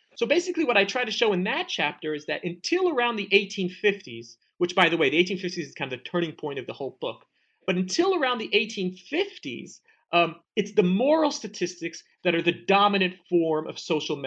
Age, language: 40-59, English